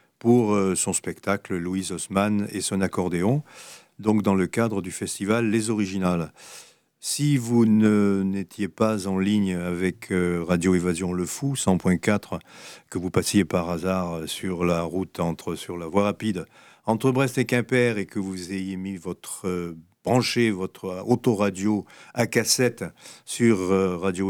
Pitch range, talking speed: 90-115 Hz, 150 wpm